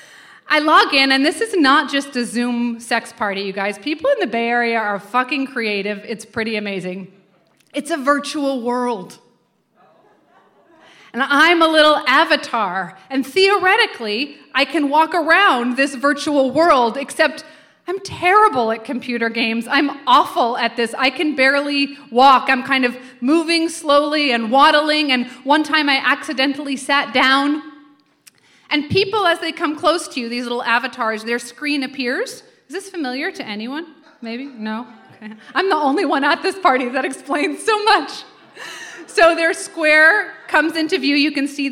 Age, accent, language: 30-49, American, English